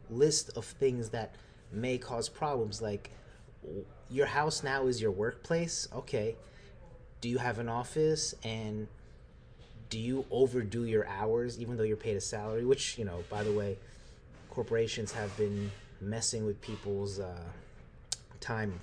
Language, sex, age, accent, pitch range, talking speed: English, male, 30-49, American, 100-120 Hz, 145 wpm